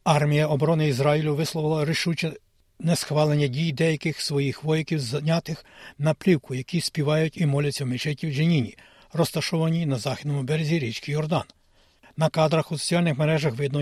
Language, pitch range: Ukrainian, 140-165 Hz